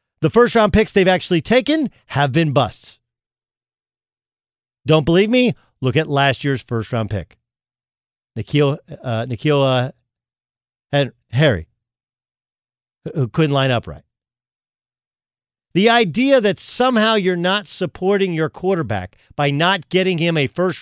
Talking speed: 135 wpm